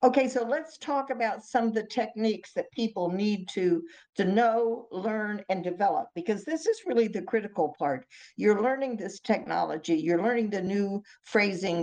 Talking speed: 170 wpm